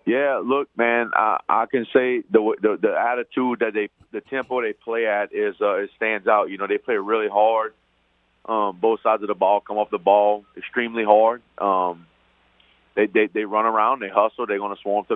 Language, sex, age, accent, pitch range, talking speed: English, male, 30-49, American, 100-115 Hz, 215 wpm